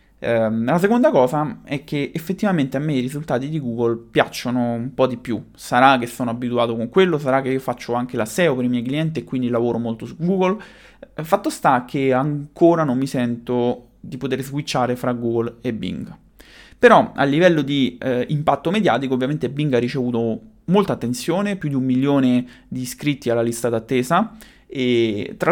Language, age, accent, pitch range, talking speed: Italian, 20-39, native, 120-155 Hz, 185 wpm